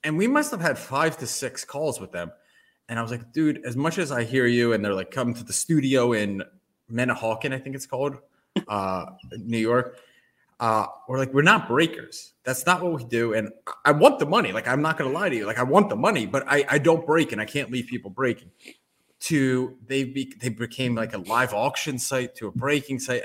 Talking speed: 235 wpm